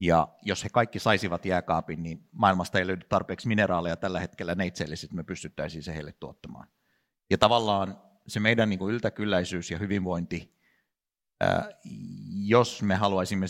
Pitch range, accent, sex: 85-100 Hz, native, male